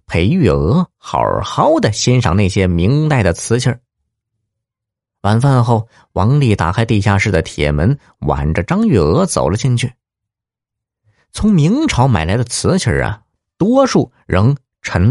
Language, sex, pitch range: Chinese, male, 95-145 Hz